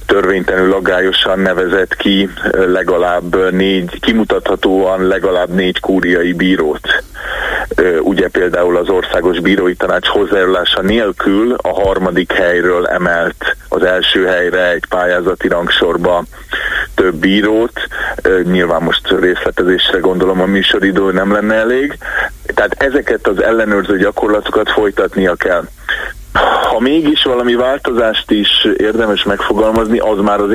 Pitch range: 95-110 Hz